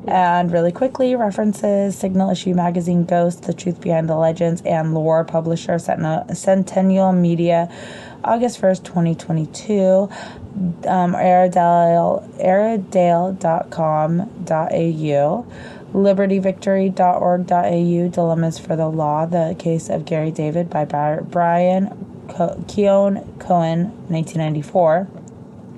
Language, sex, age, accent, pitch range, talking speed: English, female, 20-39, American, 165-190 Hz, 100 wpm